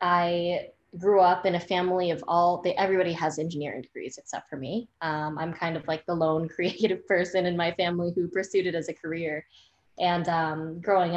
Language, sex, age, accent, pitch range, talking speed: English, female, 20-39, American, 170-195 Hz, 195 wpm